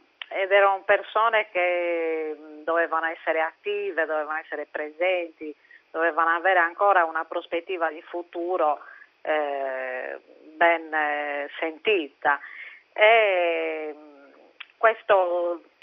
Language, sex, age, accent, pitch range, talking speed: Italian, female, 40-59, native, 155-190 Hz, 80 wpm